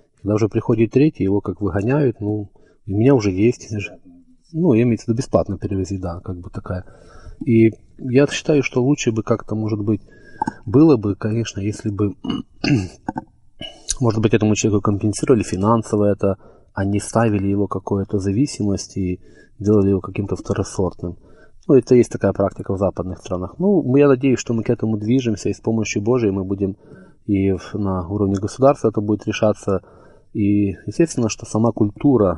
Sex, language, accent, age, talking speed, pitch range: male, Russian, native, 20-39, 165 wpm, 100-115 Hz